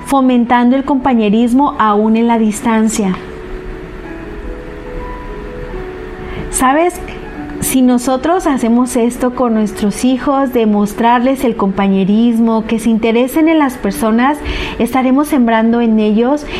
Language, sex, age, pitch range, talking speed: Spanish, female, 40-59, 215-260 Hz, 105 wpm